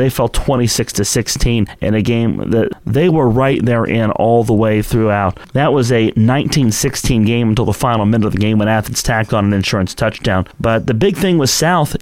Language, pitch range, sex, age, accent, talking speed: English, 105-130 Hz, male, 30-49, American, 215 wpm